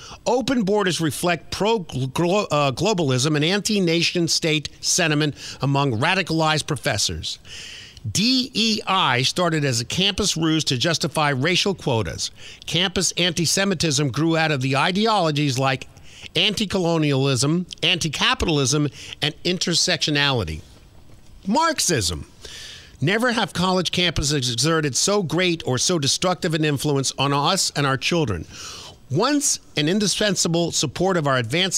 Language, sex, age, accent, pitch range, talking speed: English, male, 50-69, American, 135-180 Hz, 115 wpm